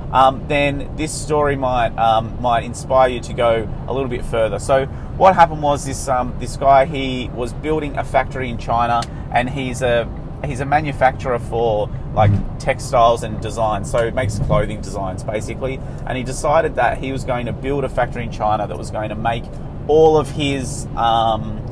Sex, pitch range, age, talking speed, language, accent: male, 120-140 Hz, 30-49, 190 wpm, English, Australian